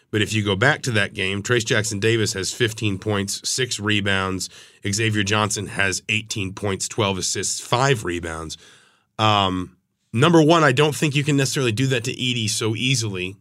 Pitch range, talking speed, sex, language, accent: 100-120 Hz, 180 wpm, male, English, American